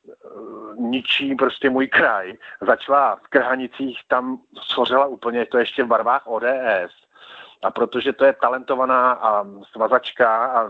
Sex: male